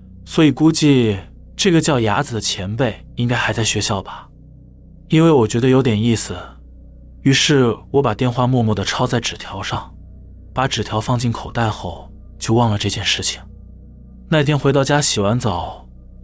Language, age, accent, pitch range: Chinese, 20-39, native, 90-125 Hz